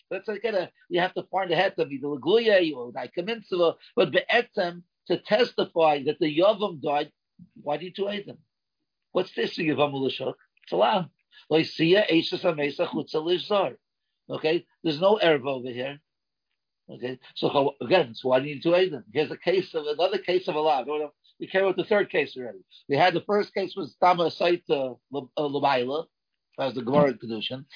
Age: 50-69